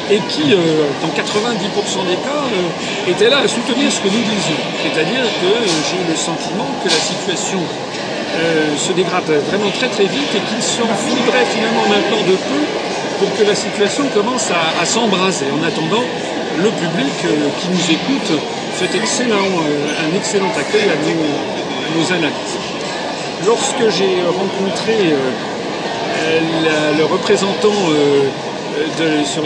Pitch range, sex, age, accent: 155-210 Hz, male, 50-69, French